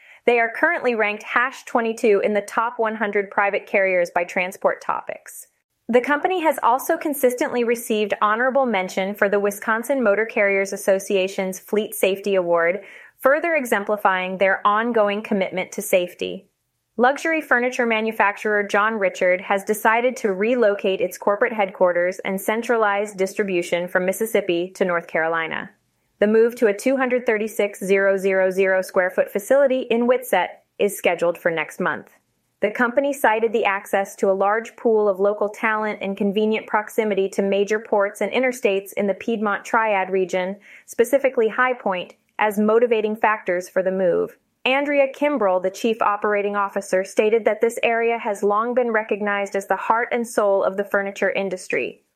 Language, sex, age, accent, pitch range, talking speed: English, female, 20-39, American, 195-240 Hz, 150 wpm